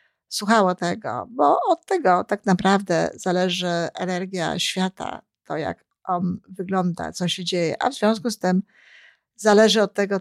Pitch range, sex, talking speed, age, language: 180-210 Hz, female, 145 wpm, 50-69, Polish